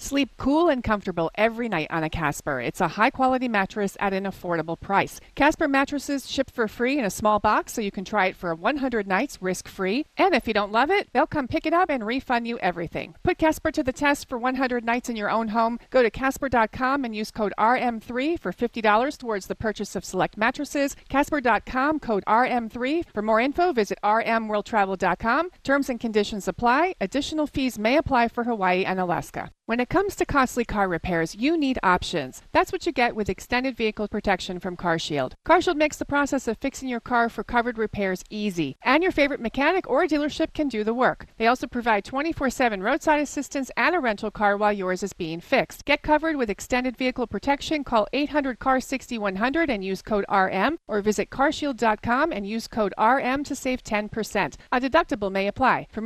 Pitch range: 205-280 Hz